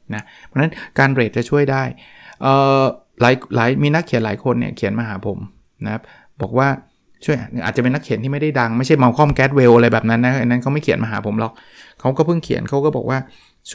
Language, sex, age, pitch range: Thai, male, 20-39, 120-150 Hz